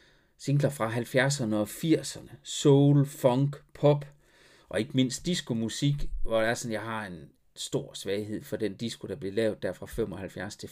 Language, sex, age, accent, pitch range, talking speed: Danish, male, 40-59, native, 105-140 Hz, 160 wpm